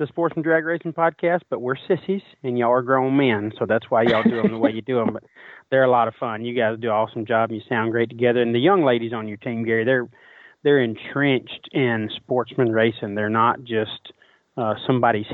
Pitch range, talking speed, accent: 110-120 Hz, 240 wpm, American